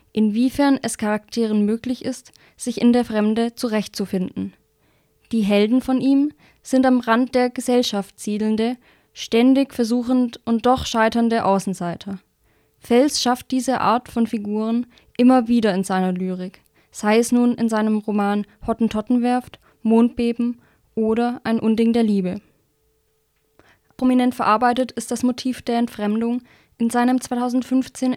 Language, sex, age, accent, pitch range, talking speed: English, female, 20-39, German, 210-245 Hz, 130 wpm